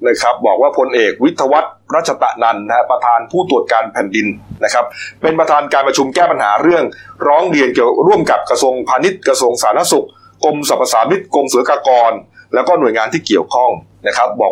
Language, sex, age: Thai, male, 30-49